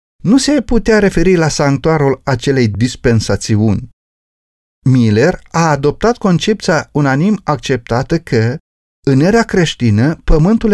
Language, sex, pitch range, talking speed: Romanian, male, 125-190 Hz, 105 wpm